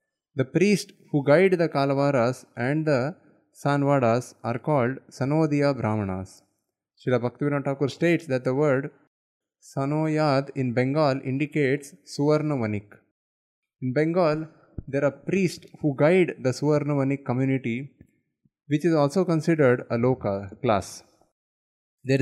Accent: Indian